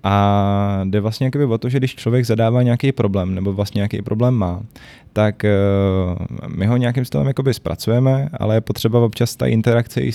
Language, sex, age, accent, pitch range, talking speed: Czech, male, 20-39, native, 100-115 Hz, 175 wpm